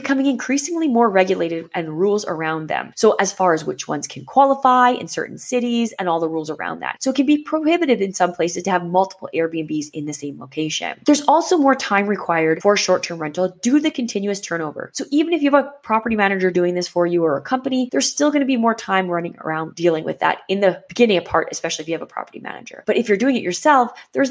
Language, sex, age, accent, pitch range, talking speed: English, female, 20-39, American, 180-255 Hz, 245 wpm